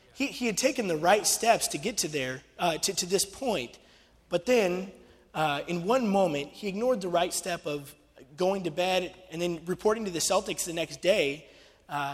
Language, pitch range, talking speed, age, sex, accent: English, 155-205 Hz, 205 wpm, 20-39, male, American